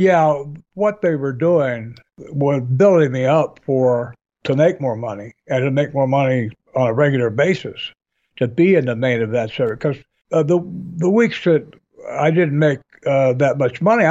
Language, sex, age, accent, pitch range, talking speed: English, male, 60-79, American, 125-150 Hz, 180 wpm